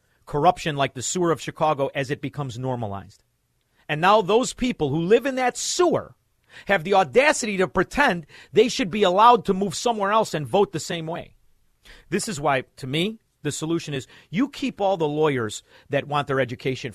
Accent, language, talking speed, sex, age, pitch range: American, English, 190 wpm, male, 50-69, 140-210 Hz